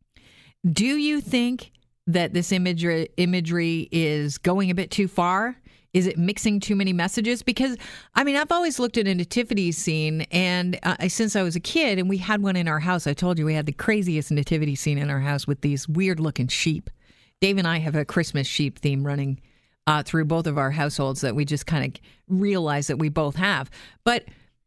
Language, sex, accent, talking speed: English, female, American, 205 wpm